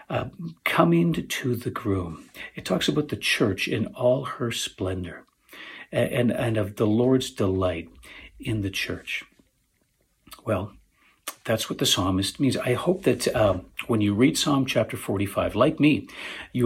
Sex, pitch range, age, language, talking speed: male, 95-125 Hz, 50-69, English, 150 wpm